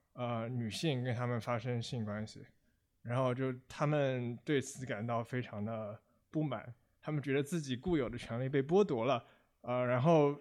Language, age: Chinese, 20-39